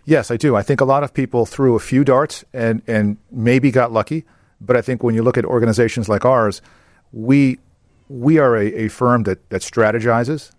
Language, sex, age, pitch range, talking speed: English, male, 50-69, 100-120 Hz, 210 wpm